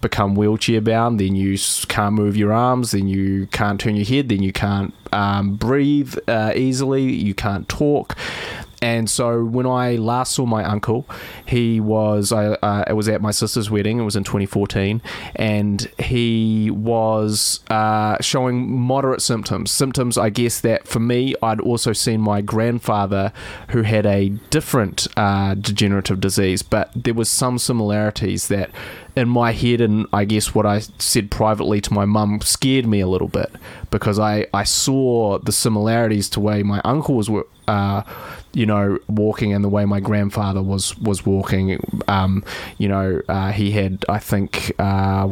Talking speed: 170 wpm